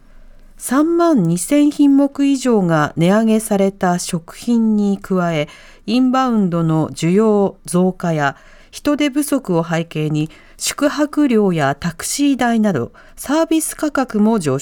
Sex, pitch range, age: female, 165-245 Hz, 40-59